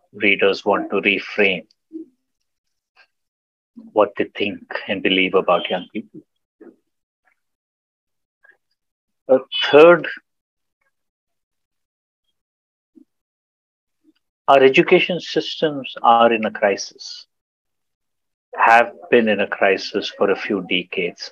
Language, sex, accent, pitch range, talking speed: Kannada, male, native, 90-140 Hz, 85 wpm